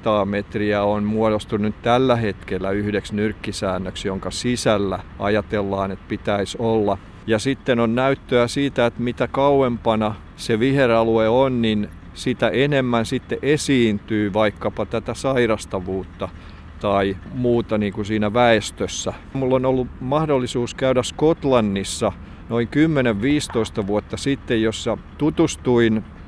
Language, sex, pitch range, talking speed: Finnish, male, 105-135 Hz, 115 wpm